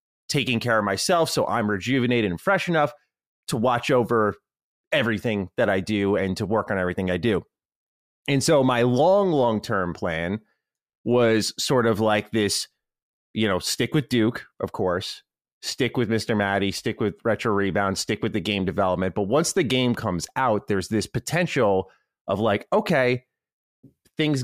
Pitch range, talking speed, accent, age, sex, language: 100-125 Hz, 170 wpm, American, 30-49, male, English